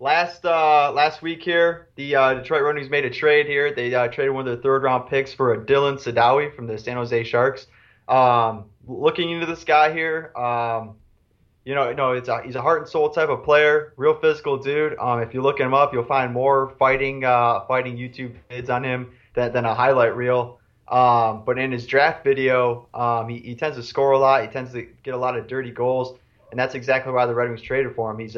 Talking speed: 235 wpm